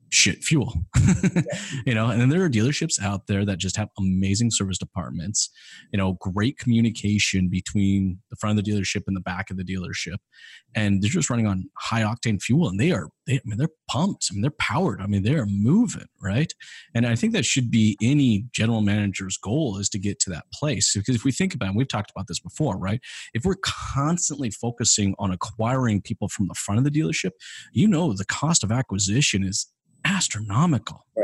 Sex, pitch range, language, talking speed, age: male, 100-135 Hz, English, 205 wpm, 30-49